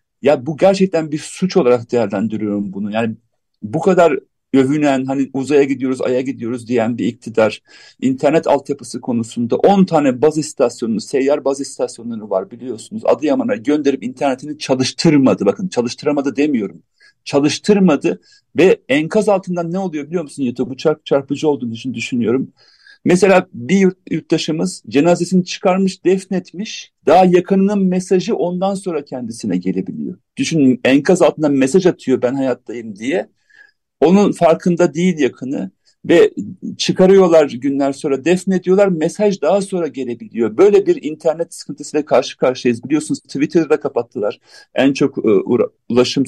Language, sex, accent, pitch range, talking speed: Turkish, male, native, 135-190 Hz, 125 wpm